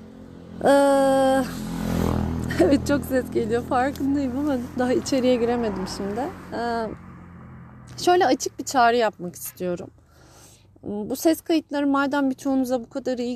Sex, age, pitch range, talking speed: female, 30-49, 215-270 Hz, 110 wpm